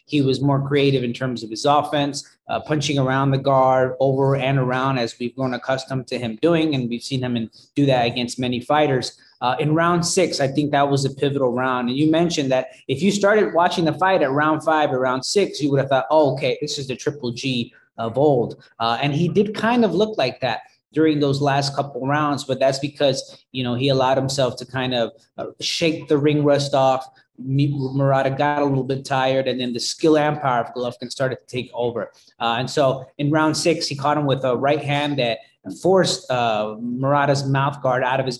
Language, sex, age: English, male, 20-39